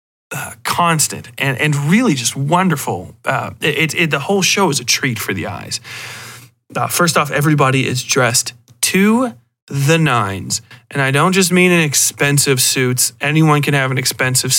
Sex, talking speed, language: male, 170 wpm, English